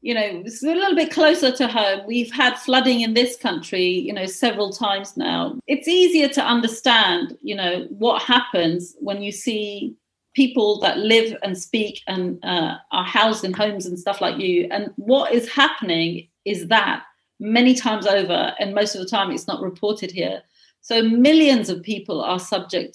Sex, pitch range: female, 185-245 Hz